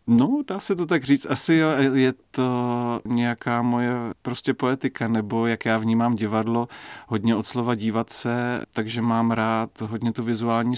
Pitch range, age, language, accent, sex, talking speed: 110-125 Hz, 40-59, Czech, native, male, 160 wpm